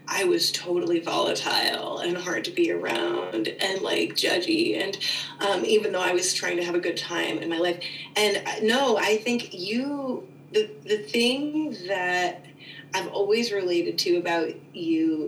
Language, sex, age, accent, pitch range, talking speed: English, female, 30-49, American, 155-205 Hz, 165 wpm